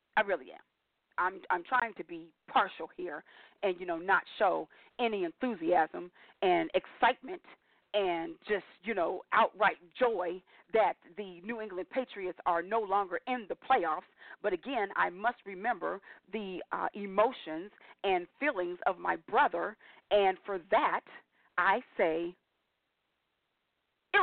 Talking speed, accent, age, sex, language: 135 wpm, American, 40-59, female, English